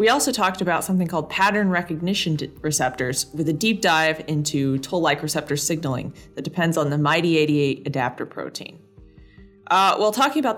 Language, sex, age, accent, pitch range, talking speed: English, female, 20-39, American, 150-195 Hz, 160 wpm